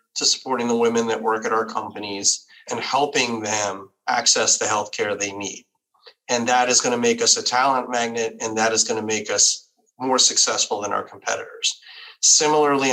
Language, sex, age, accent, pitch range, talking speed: English, male, 30-49, American, 110-135 Hz, 175 wpm